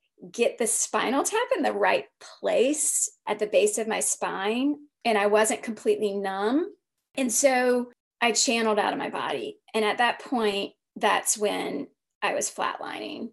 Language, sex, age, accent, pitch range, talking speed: English, female, 30-49, American, 215-270 Hz, 160 wpm